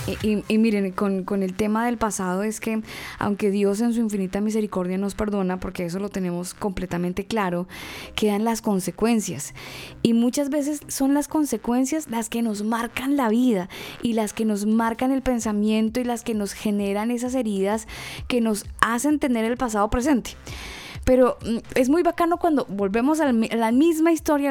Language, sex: Spanish, female